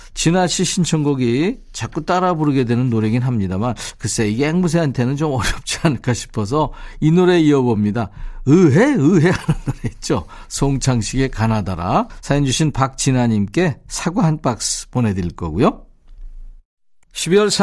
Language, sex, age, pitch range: Korean, male, 50-69, 110-160 Hz